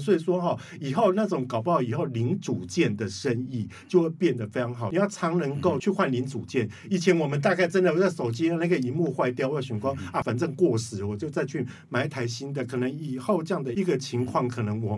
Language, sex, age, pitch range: Chinese, male, 50-69, 110-155 Hz